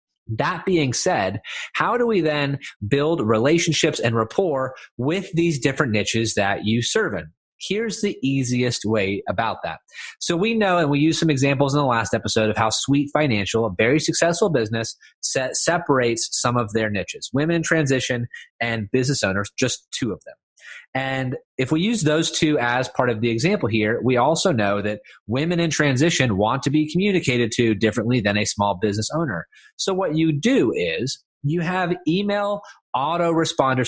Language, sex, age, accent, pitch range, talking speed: English, male, 30-49, American, 115-165 Hz, 175 wpm